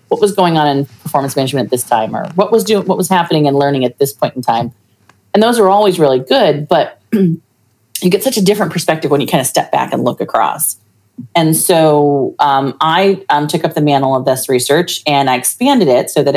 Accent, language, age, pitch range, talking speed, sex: American, English, 30-49, 130-170 Hz, 235 wpm, female